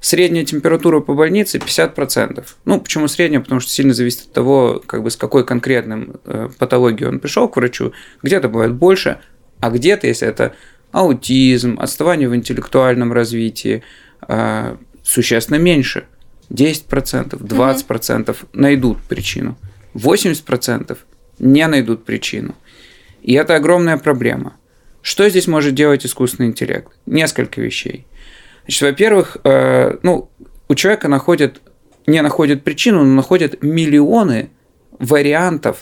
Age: 20-39